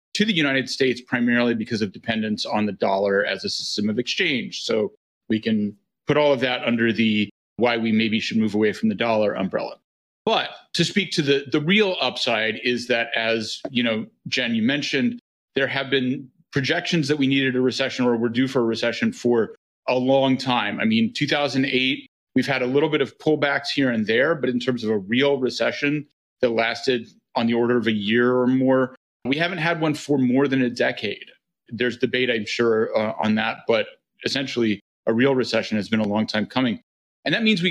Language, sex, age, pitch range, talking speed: English, male, 30-49, 115-145 Hz, 210 wpm